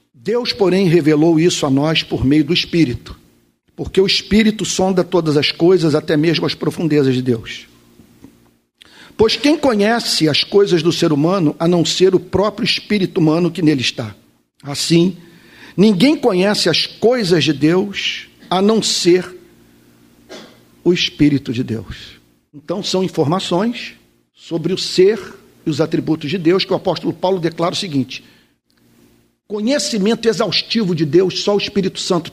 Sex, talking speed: male, 150 wpm